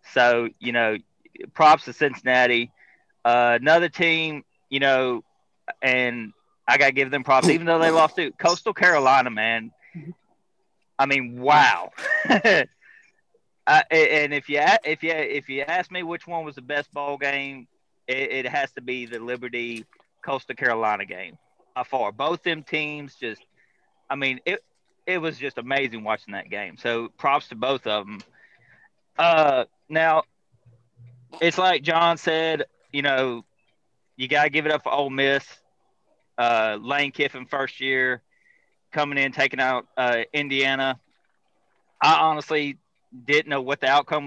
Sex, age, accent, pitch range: male, 30-49, American, 125-155 Hz